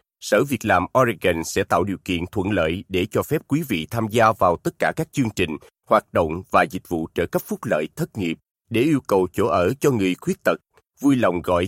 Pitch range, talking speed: 95-135 Hz, 235 wpm